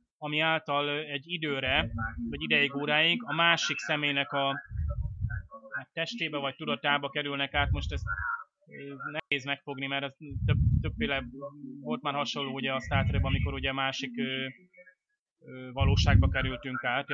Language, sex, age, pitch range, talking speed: Hungarian, male, 20-39, 125-155 Hz, 125 wpm